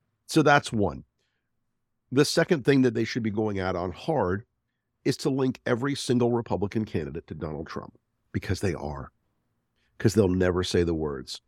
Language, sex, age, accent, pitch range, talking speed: English, male, 50-69, American, 95-120 Hz, 175 wpm